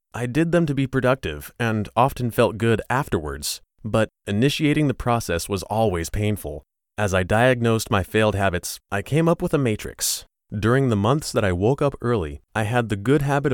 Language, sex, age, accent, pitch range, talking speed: English, male, 30-49, American, 95-130 Hz, 190 wpm